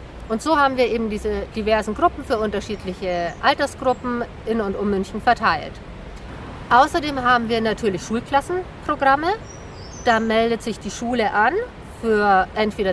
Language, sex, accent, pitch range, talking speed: German, female, German, 215-265 Hz, 135 wpm